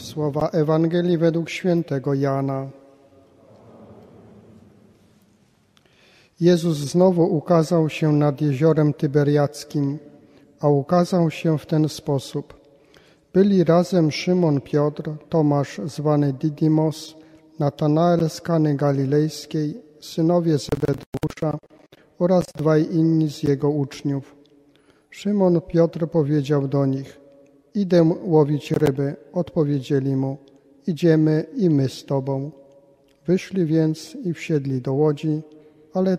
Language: Polish